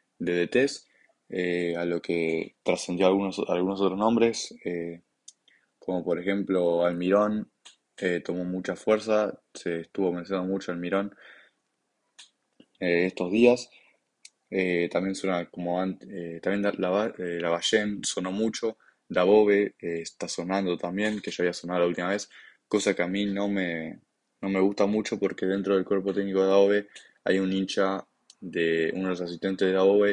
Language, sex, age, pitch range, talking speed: Spanish, male, 20-39, 85-100 Hz, 160 wpm